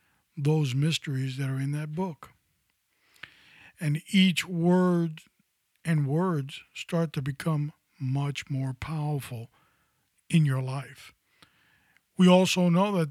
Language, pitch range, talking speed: English, 145-180 Hz, 115 wpm